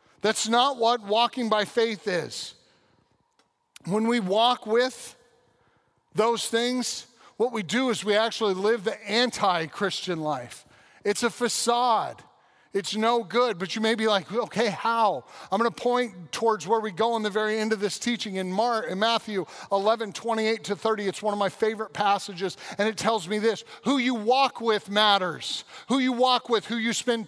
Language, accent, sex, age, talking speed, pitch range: English, American, male, 40-59, 180 wpm, 210-245 Hz